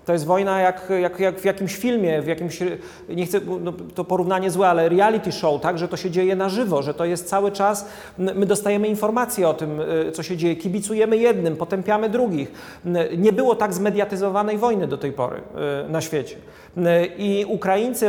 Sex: male